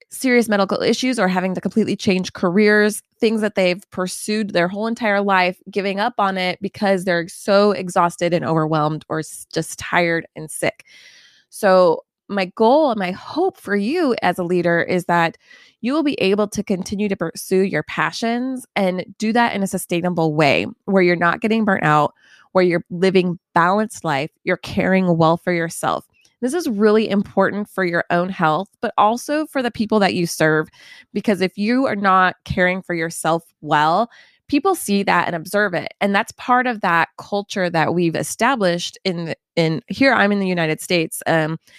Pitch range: 170-210 Hz